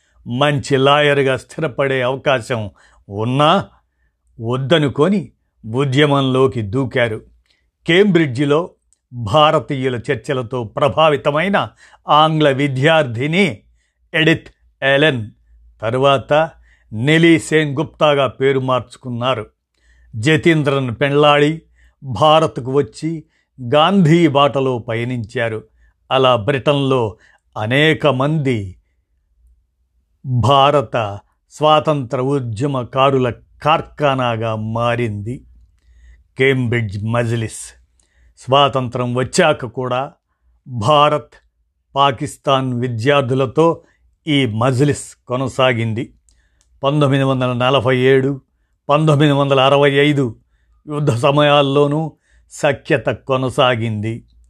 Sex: male